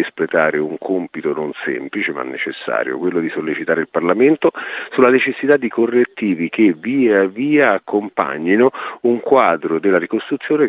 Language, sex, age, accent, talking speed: Italian, male, 50-69, native, 135 wpm